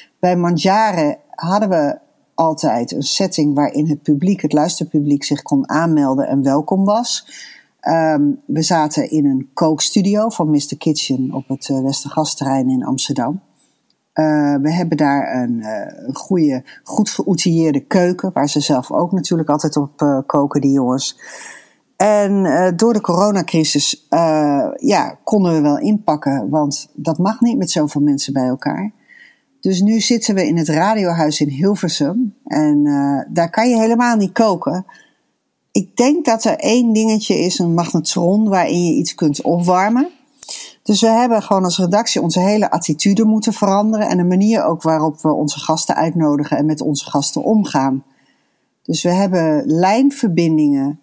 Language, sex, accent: Dutch, female, Dutch